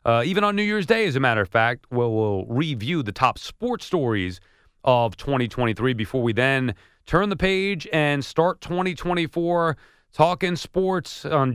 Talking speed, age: 165 wpm, 40-59